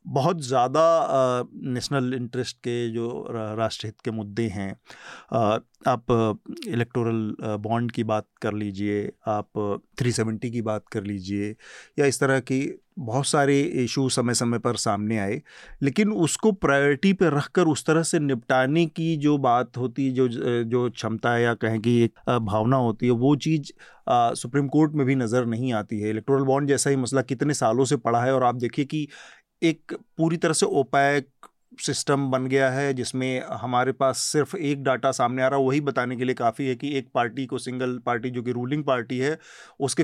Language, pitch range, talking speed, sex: Hindi, 120-150 Hz, 180 wpm, male